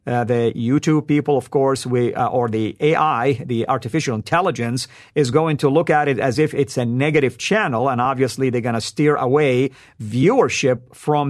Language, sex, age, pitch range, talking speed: English, male, 50-69, 130-160 Hz, 185 wpm